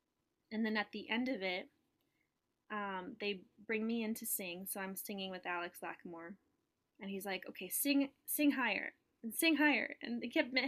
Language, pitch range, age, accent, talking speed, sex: English, 195-265 Hz, 20-39, American, 185 wpm, female